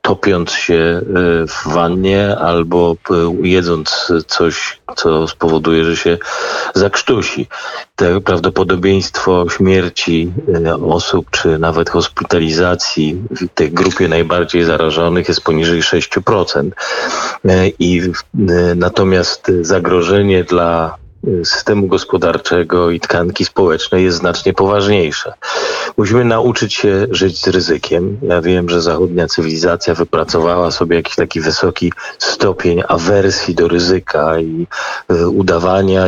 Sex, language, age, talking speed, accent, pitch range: male, Polish, 40-59, 100 wpm, native, 85-95 Hz